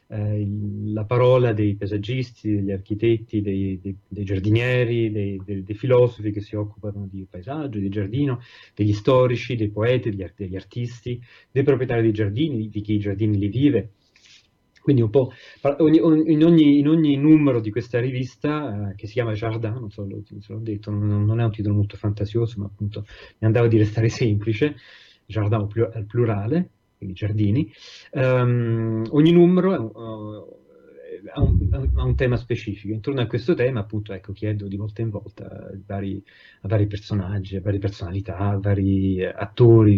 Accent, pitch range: native, 100-125 Hz